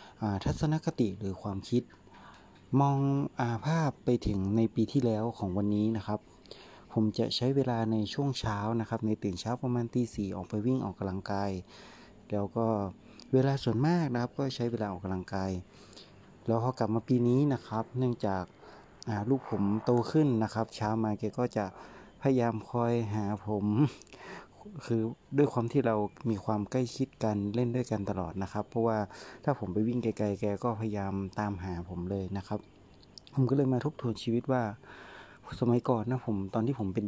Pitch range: 105-125 Hz